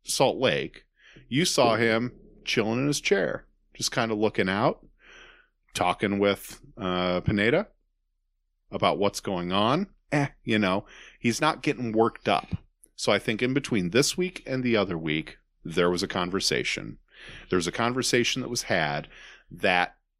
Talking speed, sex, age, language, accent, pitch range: 155 wpm, male, 40-59, English, American, 90-125 Hz